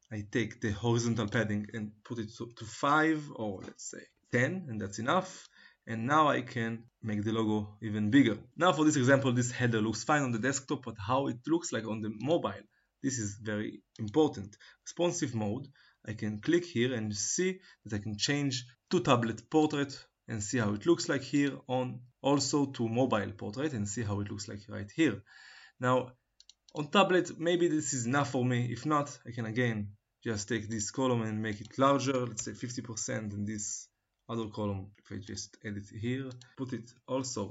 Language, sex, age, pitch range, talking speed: Hebrew, male, 20-39, 110-135 Hz, 195 wpm